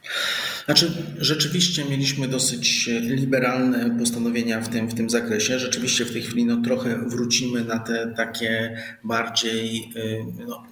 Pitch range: 120-155 Hz